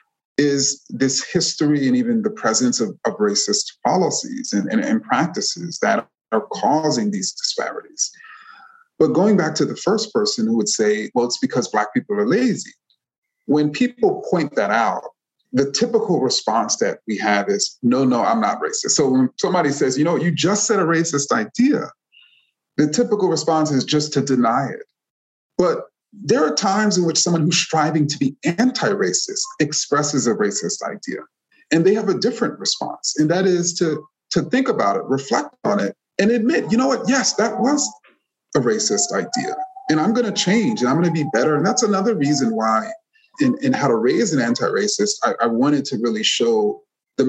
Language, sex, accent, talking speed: English, male, American, 190 wpm